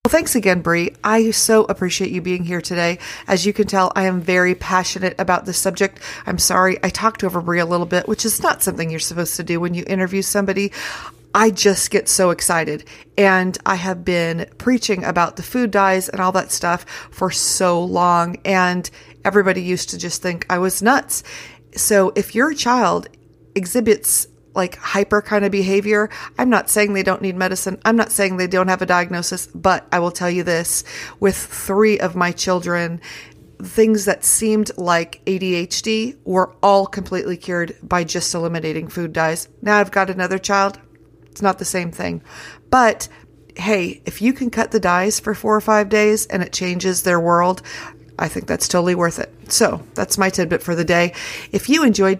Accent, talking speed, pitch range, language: American, 190 wpm, 175-210 Hz, English